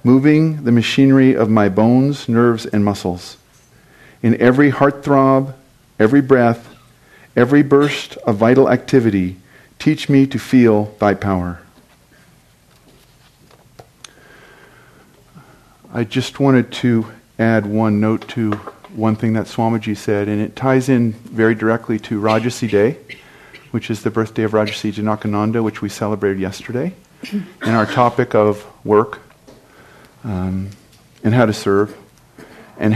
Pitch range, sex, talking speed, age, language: 105-130 Hz, male, 125 wpm, 50-69, English